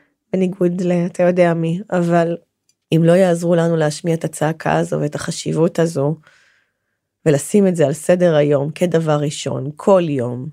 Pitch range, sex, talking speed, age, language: 150-180 Hz, female, 155 wpm, 30-49, Hebrew